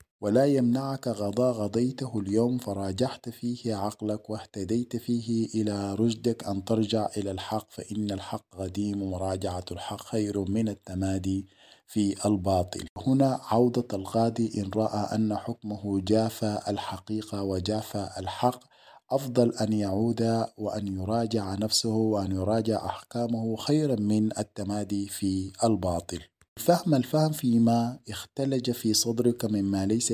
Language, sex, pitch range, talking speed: Arabic, male, 100-115 Hz, 115 wpm